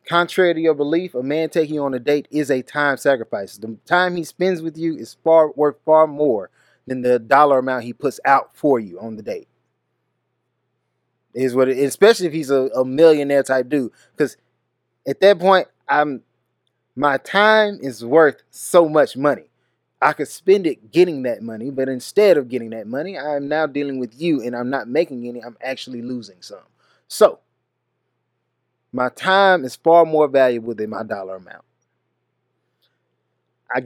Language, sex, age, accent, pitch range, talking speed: English, male, 20-39, American, 120-160 Hz, 175 wpm